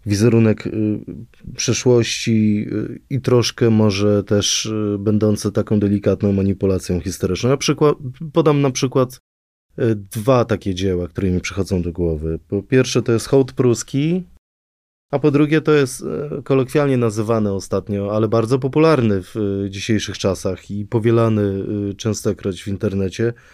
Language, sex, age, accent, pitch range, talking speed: Polish, male, 20-39, native, 100-125 Hz, 140 wpm